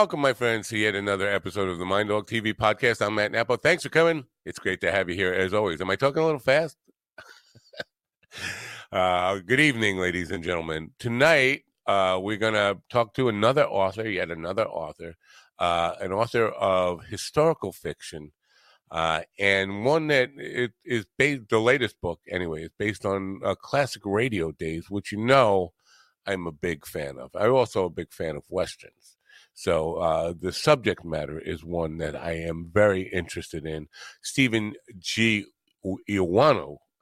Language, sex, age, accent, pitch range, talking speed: English, male, 50-69, American, 90-110 Hz, 170 wpm